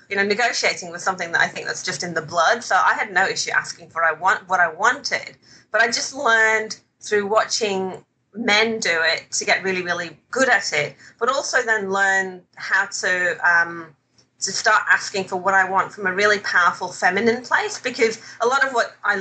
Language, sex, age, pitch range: English, female, 30-49, 180-220 Hz